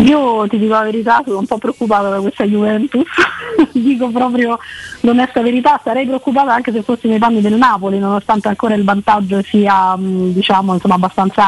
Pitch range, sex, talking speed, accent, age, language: 190-225 Hz, female, 170 wpm, native, 20-39, Italian